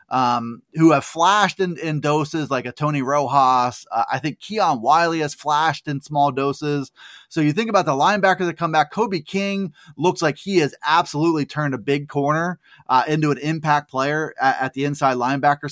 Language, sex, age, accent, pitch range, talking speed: English, male, 20-39, American, 140-175 Hz, 195 wpm